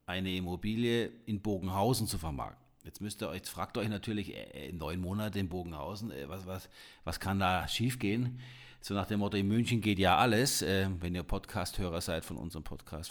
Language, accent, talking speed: German, German, 200 wpm